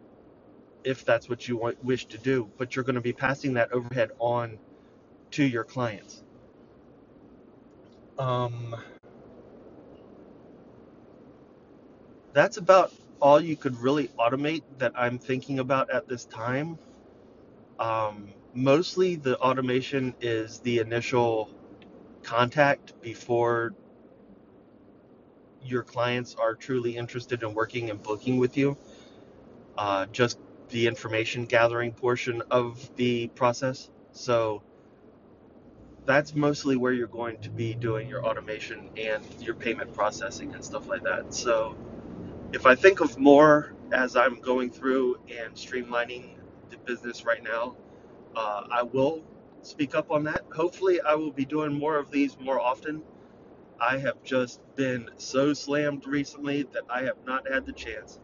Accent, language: American, English